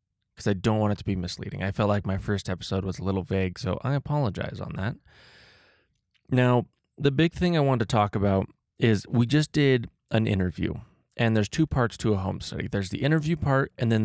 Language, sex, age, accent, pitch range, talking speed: English, male, 20-39, American, 100-130 Hz, 220 wpm